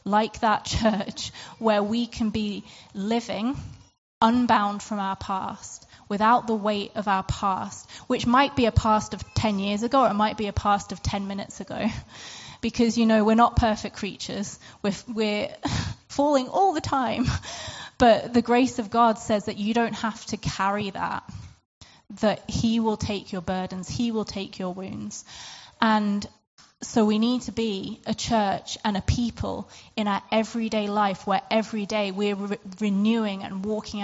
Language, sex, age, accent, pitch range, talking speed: English, female, 20-39, British, 200-225 Hz, 165 wpm